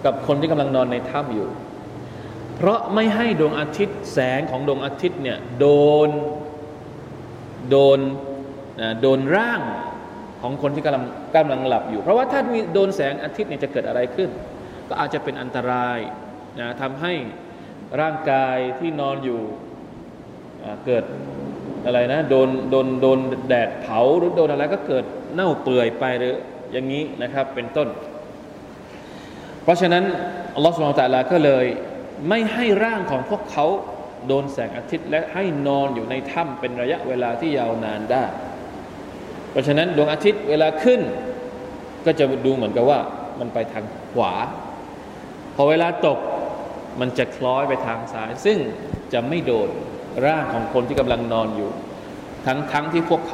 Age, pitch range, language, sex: 20-39, 125-165 Hz, Thai, male